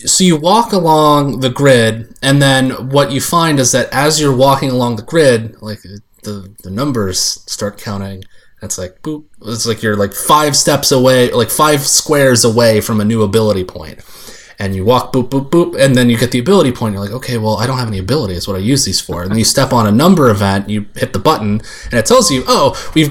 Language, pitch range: English, 105-135 Hz